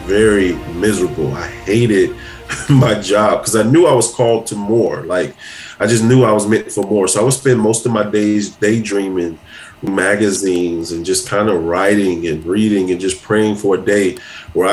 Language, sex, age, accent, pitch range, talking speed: English, male, 30-49, American, 95-115 Hz, 190 wpm